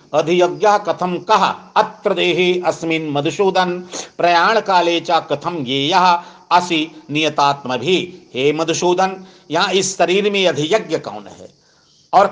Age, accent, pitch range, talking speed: 60-79, native, 170-200 Hz, 105 wpm